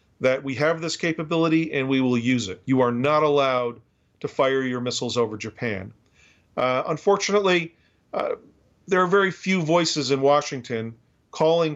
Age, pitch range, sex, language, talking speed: 40-59, 125-155 Hz, male, English, 160 wpm